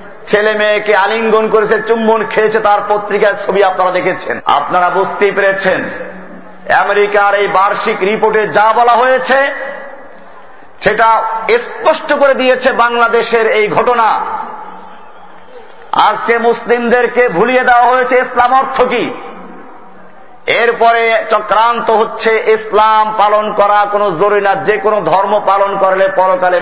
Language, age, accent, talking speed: Bengali, 50-69, native, 70 wpm